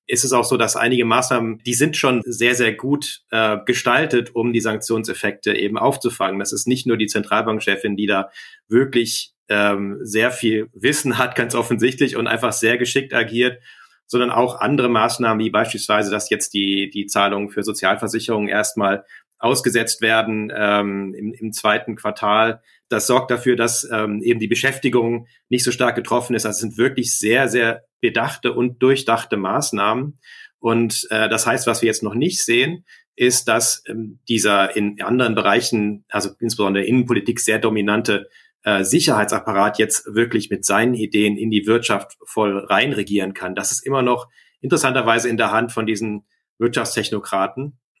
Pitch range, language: 105-125 Hz, German